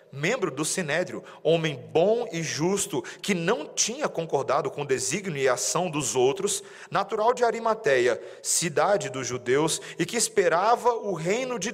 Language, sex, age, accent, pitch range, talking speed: Portuguese, male, 40-59, Brazilian, 145-220 Hz, 155 wpm